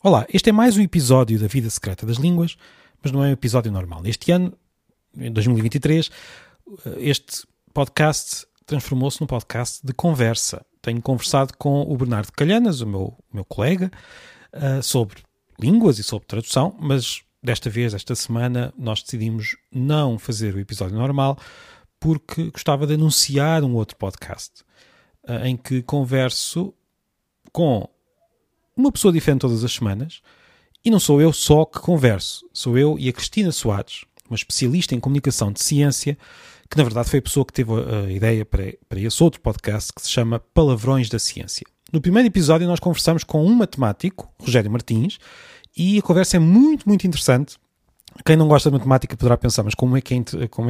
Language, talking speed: Portuguese, 165 wpm